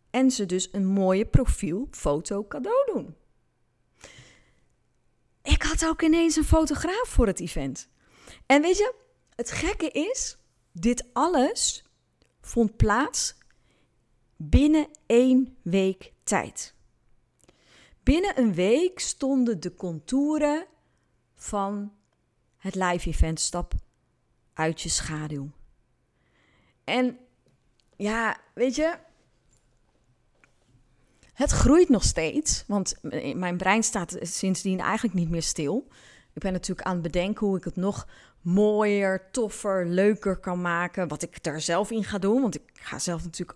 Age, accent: 30-49, Dutch